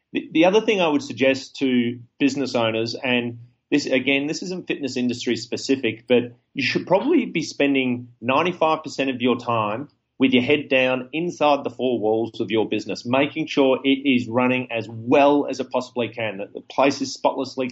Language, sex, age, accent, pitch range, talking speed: English, male, 40-59, Australian, 125-150 Hz, 185 wpm